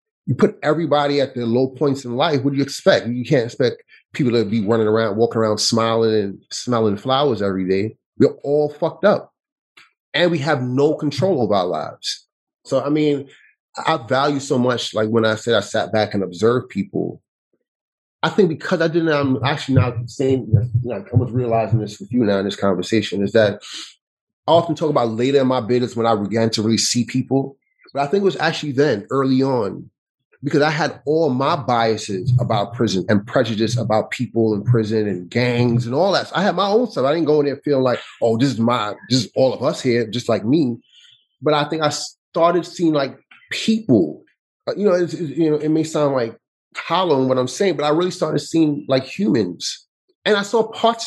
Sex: male